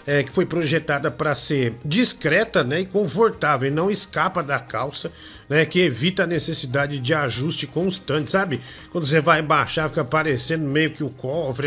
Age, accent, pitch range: 50-69, Brazilian, 140-170 Hz